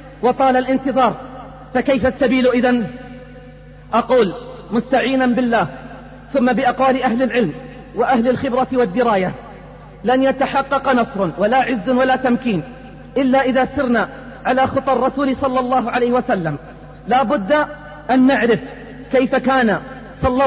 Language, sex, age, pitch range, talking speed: Arabic, female, 40-59, 240-265 Hz, 110 wpm